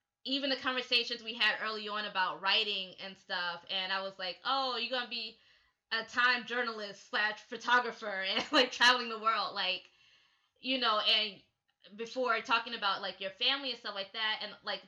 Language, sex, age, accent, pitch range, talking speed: English, female, 20-39, American, 195-245 Hz, 185 wpm